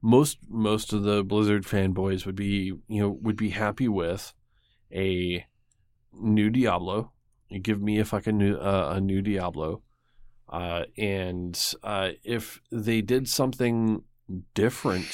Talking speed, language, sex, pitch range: 140 wpm, English, male, 100-120 Hz